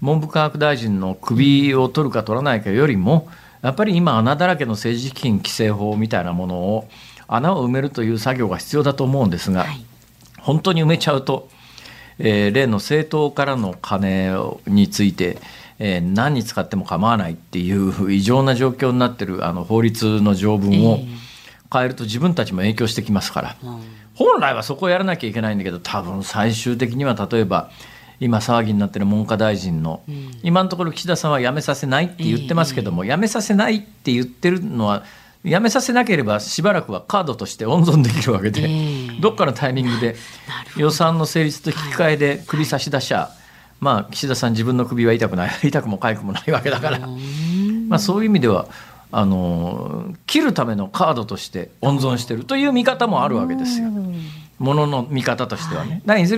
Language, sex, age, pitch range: Japanese, male, 50-69, 110-155 Hz